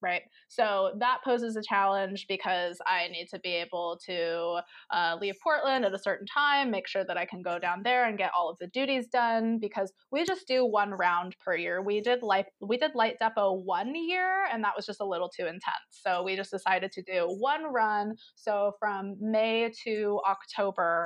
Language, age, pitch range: English, 20-39, 185-230 Hz